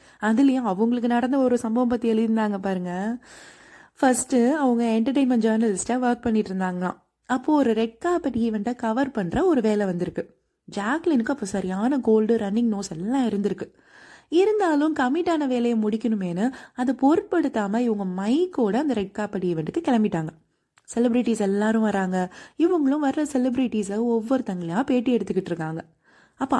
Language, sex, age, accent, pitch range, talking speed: Tamil, female, 20-39, native, 210-275 Hz, 125 wpm